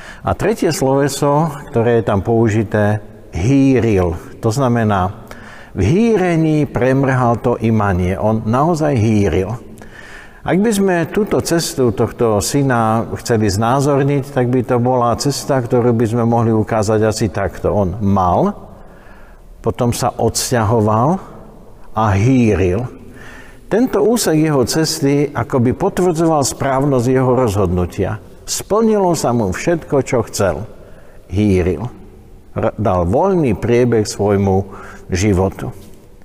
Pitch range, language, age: 105-135 Hz, Slovak, 60-79